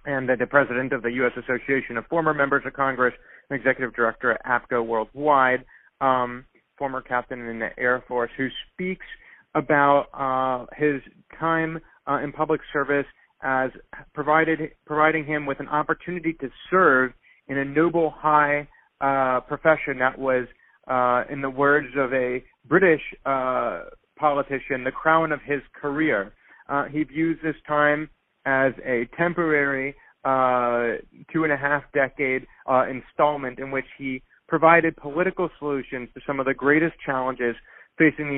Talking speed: 145 wpm